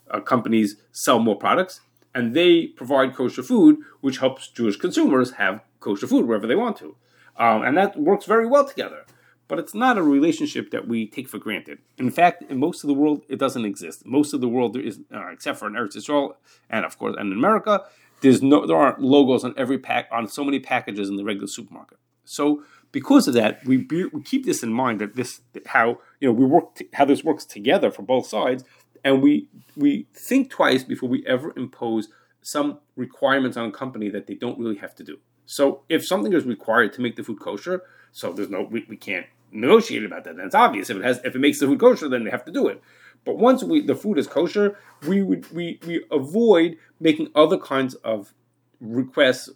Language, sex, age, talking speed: English, male, 30-49, 220 wpm